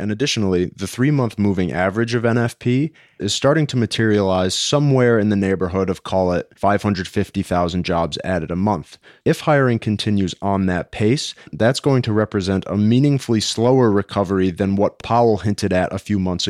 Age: 30-49